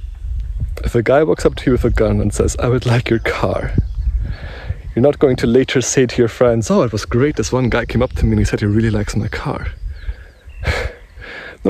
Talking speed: 235 wpm